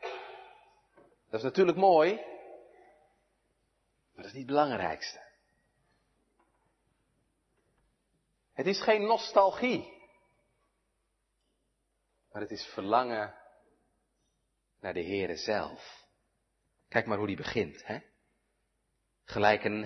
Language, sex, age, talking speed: Dutch, male, 40-59, 95 wpm